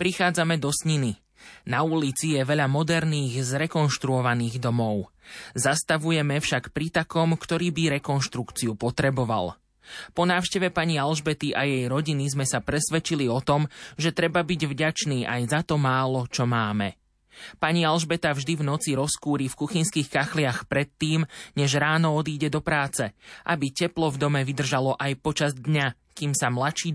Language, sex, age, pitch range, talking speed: Slovak, male, 20-39, 125-155 Hz, 145 wpm